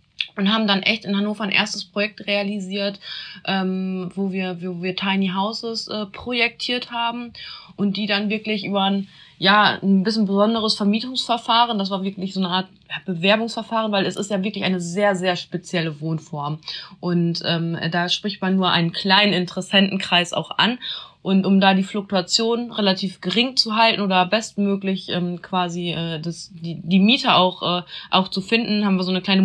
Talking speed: 175 wpm